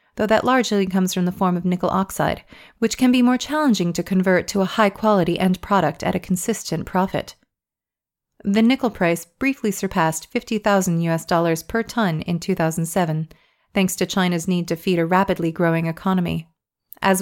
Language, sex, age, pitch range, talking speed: English, female, 30-49, 170-210 Hz, 175 wpm